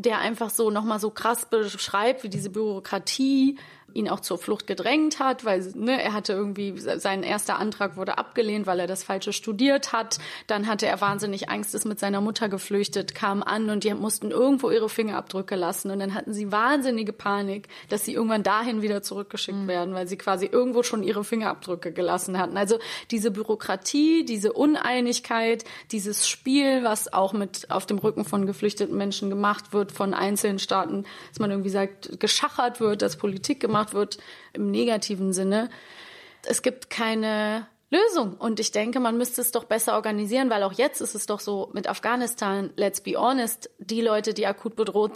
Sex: female